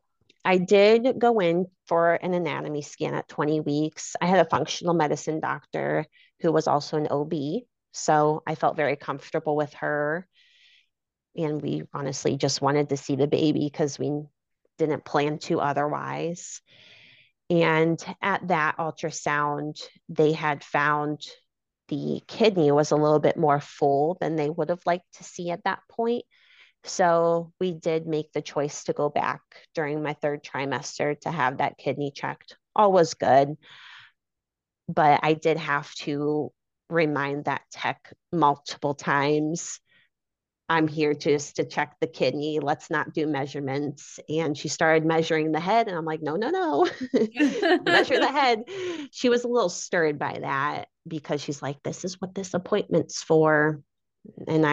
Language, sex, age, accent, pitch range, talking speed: English, female, 30-49, American, 145-175 Hz, 155 wpm